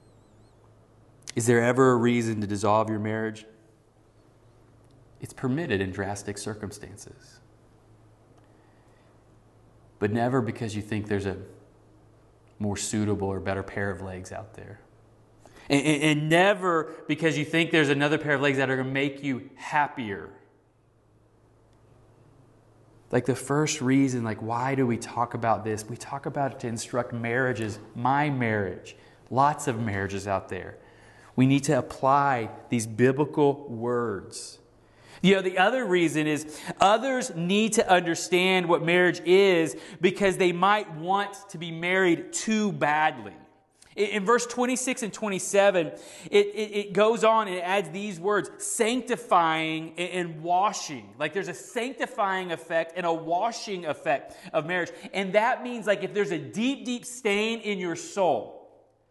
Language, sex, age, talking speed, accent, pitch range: English, male, 30-49, 150 wpm, American, 110-180 Hz